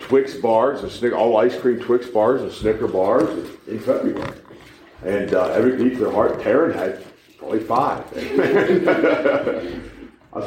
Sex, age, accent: male, 50-69, American